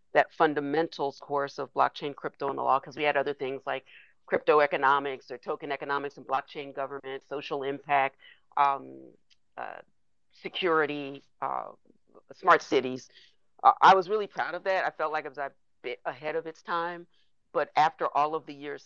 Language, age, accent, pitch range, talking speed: English, 40-59, American, 140-170 Hz, 175 wpm